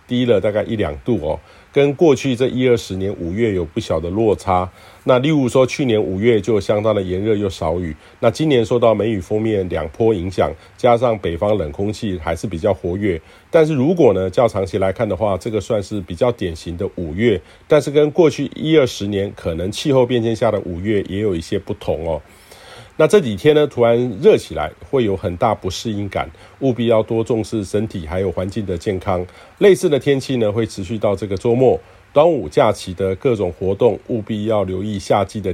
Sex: male